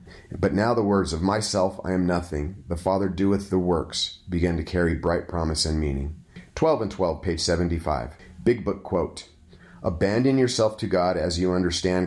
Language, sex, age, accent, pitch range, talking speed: English, male, 30-49, American, 85-100 Hz, 180 wpm